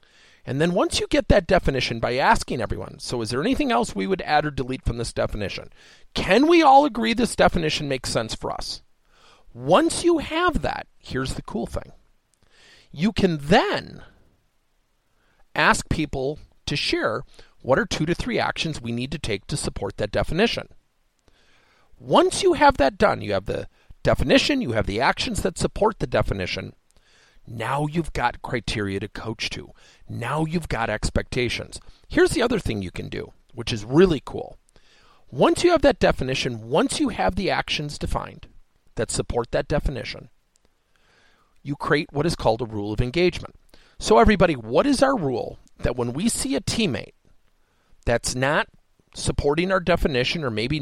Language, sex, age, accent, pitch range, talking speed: English, male, 40-59, American, 120-195 Hz, 170 wpm